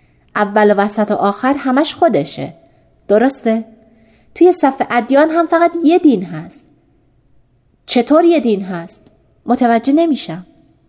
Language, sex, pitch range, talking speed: Persian, female, 205-270 Hz, 120 wpm